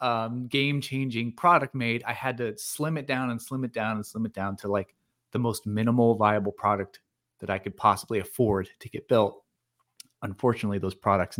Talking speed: 190 wpm